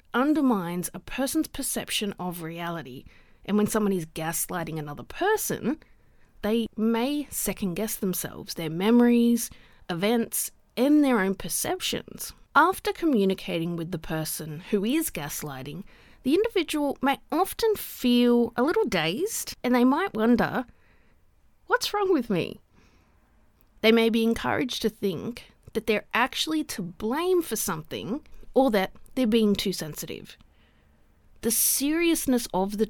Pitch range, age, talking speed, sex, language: 190-260 Hz, 30-49, 130 wpm, female, English